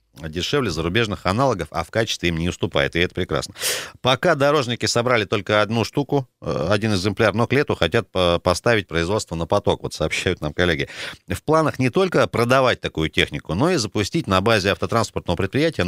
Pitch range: 90-120 Hz